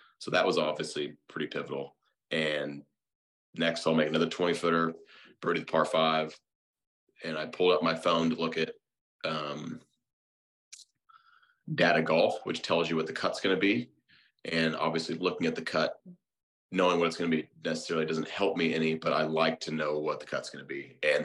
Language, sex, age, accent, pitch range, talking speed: English, male, 30-49, American, 75-85 Hz, 185 wpm